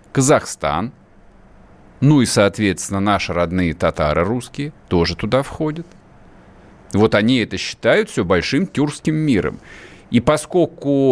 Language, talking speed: Russian, 115 wpm